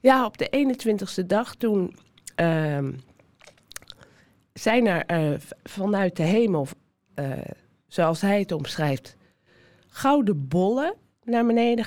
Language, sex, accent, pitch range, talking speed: Dutch, female, Dutch, 180-235 Hz, 110 wpm